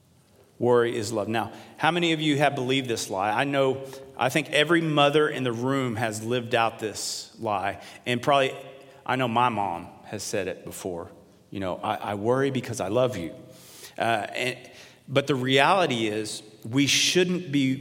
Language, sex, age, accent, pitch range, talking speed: English, male, 40-59, American, 115-140 Hz, 180 wpm